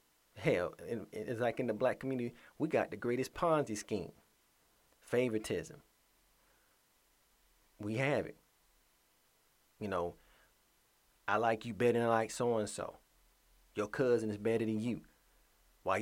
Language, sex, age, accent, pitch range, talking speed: English, male, 30-49, American, 105-120 Hz, 135 wpm